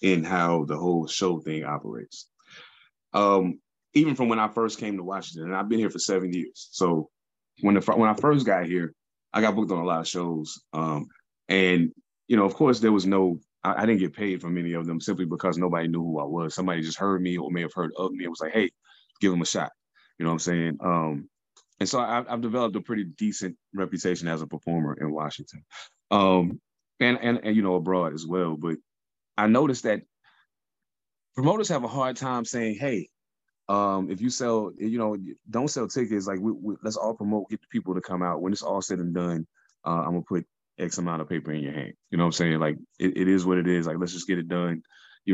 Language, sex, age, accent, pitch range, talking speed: English, male, 20-39, American, 85-105 Hz, 235 wpm